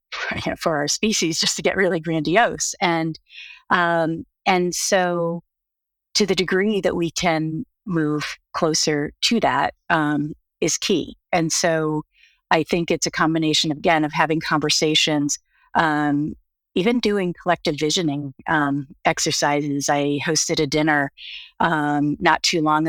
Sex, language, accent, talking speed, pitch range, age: female, English, American, 135 wpm, 145-175 Hz, 30-49